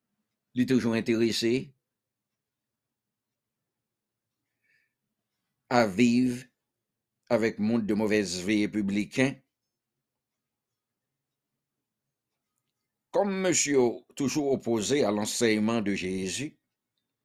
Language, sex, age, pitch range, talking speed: English, male, 60-79, 115-145 Hz, 65 wpm